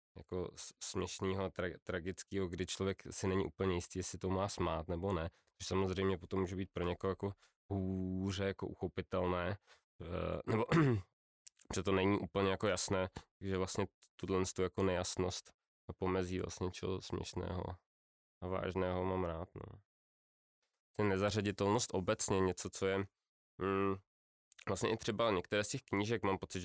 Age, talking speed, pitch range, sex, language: 20-39, 150 wpm, 90-100 Hz, male, Czech